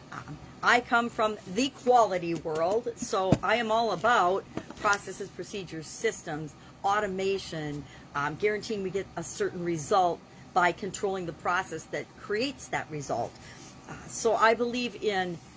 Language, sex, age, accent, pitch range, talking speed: English, female, 50-69, American, 170-230 Hz, 140 wpm